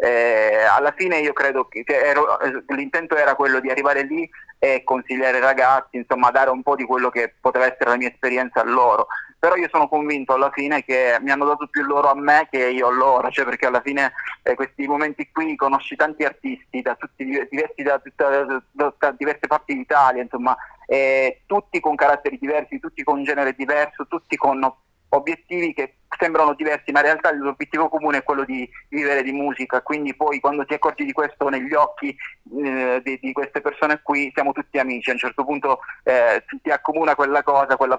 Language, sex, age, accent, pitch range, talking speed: Italian, male, 30-49, native, 130-150 Hz, 195 wpm